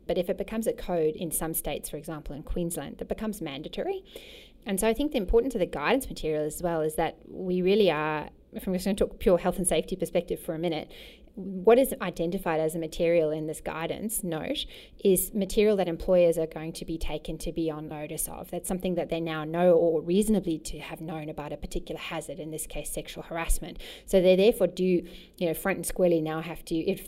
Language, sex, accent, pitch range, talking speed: English, female, Australian, 160-190 Hz, 230 wpm